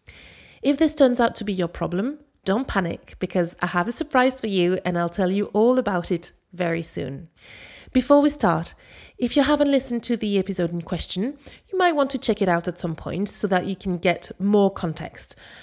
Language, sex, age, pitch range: English, female, 30-49, 170-230 Hz